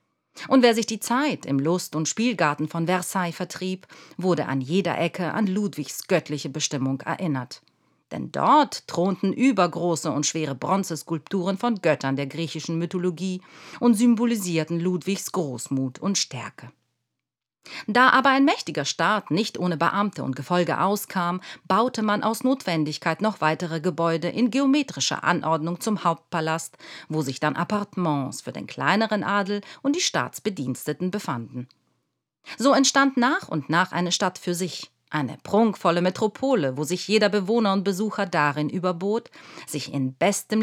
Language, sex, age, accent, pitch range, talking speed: German, female, 50-69, German, 150-210 Hz, 145 wpm